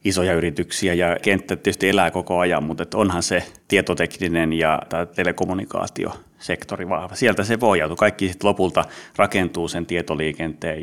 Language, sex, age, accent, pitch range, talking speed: Finnish, male, 30-49, native, 85-100 Hz, 135 wpm